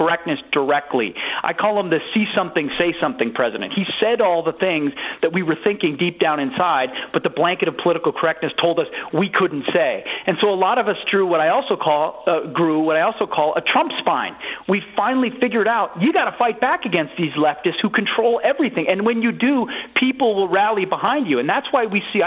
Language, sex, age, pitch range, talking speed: English, male, 40-59, 165-230 Hz, 220 wpm